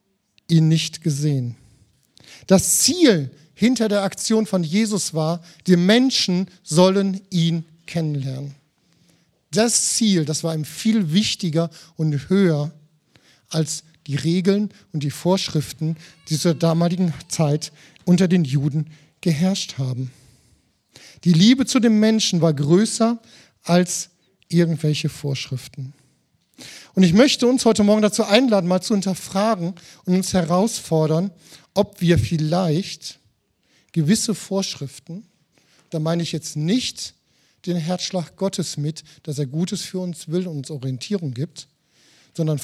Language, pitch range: German, 150-190 Hz